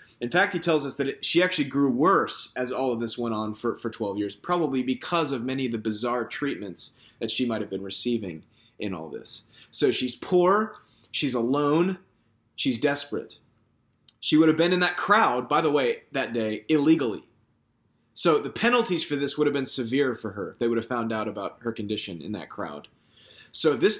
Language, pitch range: English, 115-180 Hz